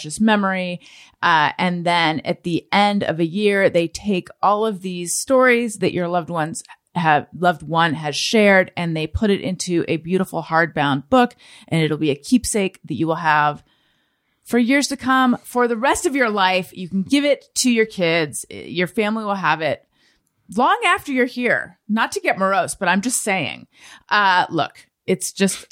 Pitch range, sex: 170-230 Hz, female